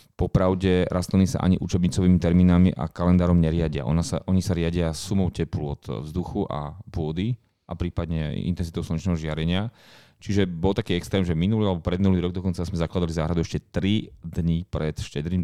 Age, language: 30-49, Slovak